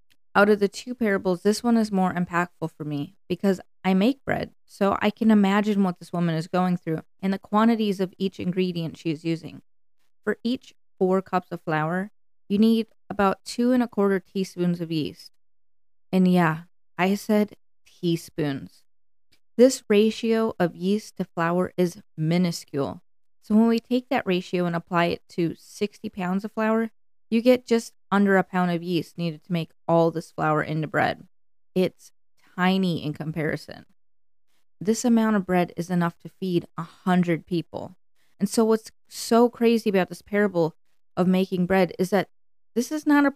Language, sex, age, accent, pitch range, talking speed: English, female, 20-39, American, 165-205 Hz, 175 wpm